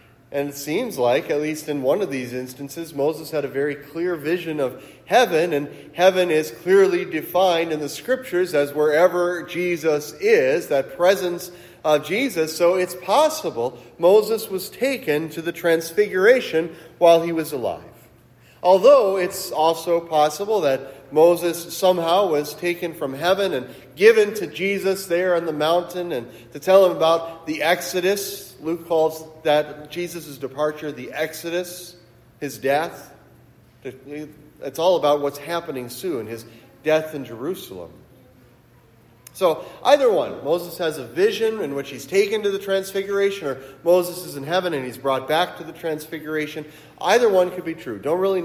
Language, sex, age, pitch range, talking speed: English, male, 40-59, 145-180 Hz, 155 wpm